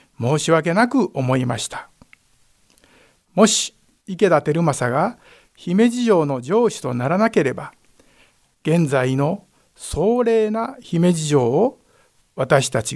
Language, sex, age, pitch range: Japanese, male, 60-79, 150-215 Hz